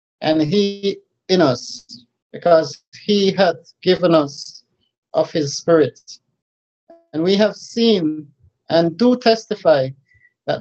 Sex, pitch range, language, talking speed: male, 145-195 Hz, English, 115 wpm